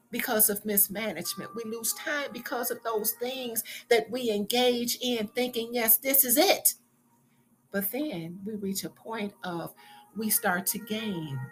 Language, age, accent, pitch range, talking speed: English, 60-79, American, 175-245 Hz, 155 wpm